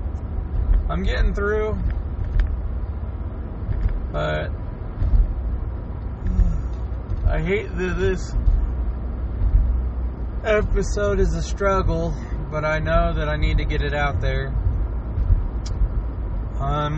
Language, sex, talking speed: English, male, 85 wpm